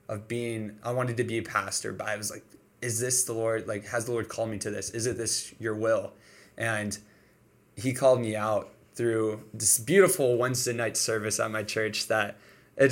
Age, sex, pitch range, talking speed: 20-39, male, 105-115 Hz, 210 wpm